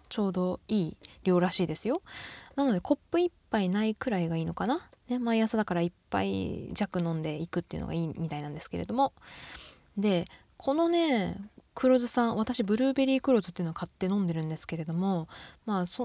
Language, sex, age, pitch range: Japanese, female, 20-39, 190-275 Hz